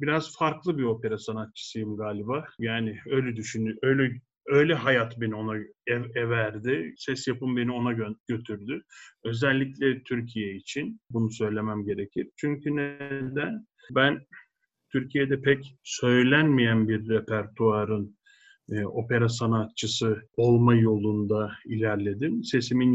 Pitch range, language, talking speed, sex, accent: 110-150 Hz, Turkish, 110 wpm, male, native